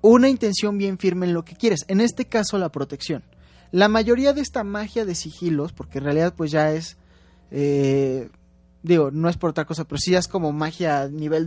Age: 20-39